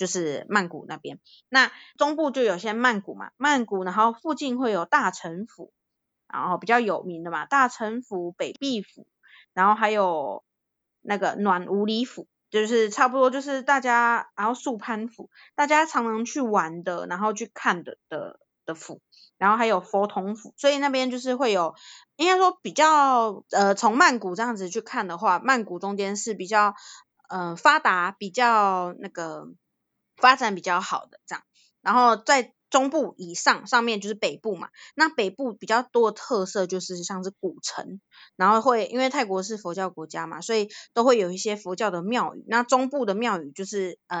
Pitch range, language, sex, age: 185-245 Hz, Chinese, female, 20-39